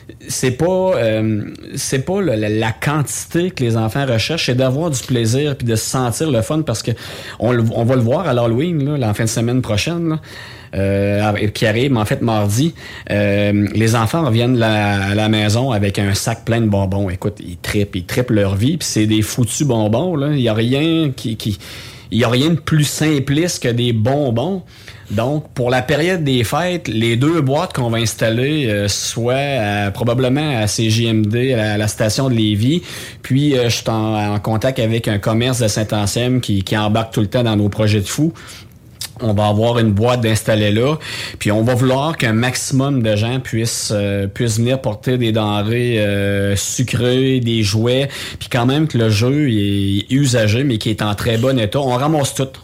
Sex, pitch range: male, 105-130 Hz